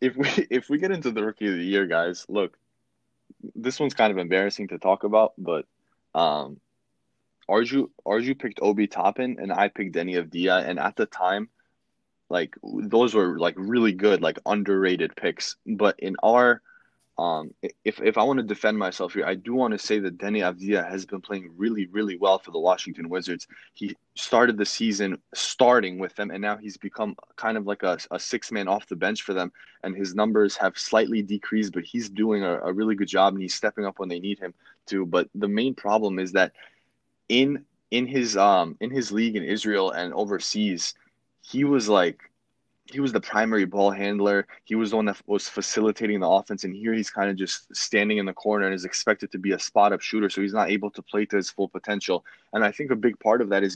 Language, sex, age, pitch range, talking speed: English, male, 20-39, 95-110 Hz, 215 wpm